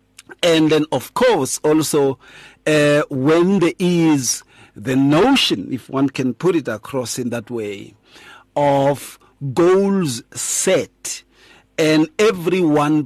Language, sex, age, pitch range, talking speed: English, male, 50-69, 130-170 Hz, 115 wpm